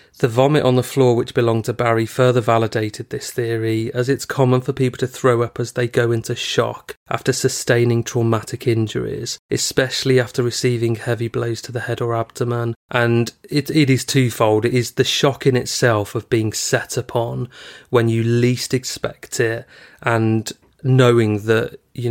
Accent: British